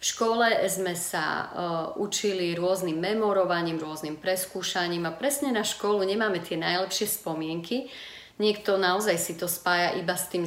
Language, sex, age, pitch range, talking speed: Slovak, female, 40-59, 170-195 Hz, 150 wpm